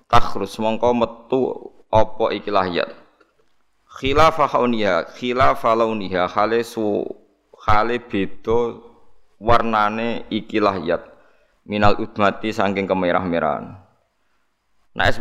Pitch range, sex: 100-115 Hz, male